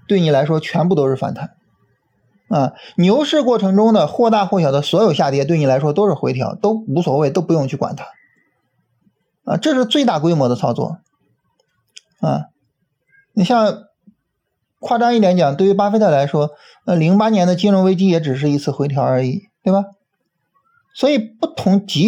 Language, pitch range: Chinese, 140-200 Hz